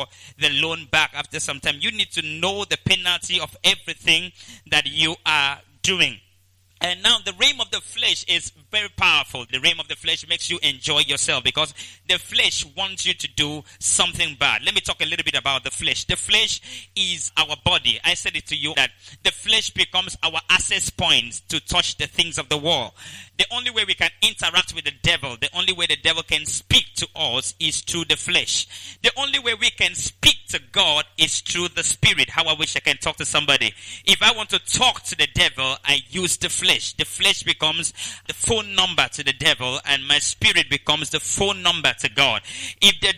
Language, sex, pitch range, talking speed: English, male, 140-175 Hz, 210 wpm